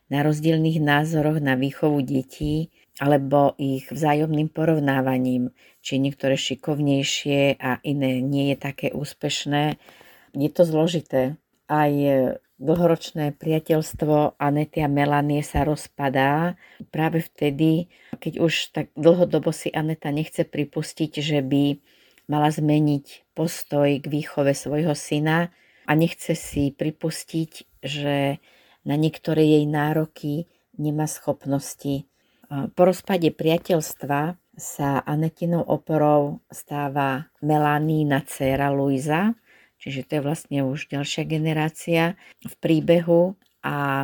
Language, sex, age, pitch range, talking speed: Slovak, female, 40-59, 140-160 Hz, 110 wpm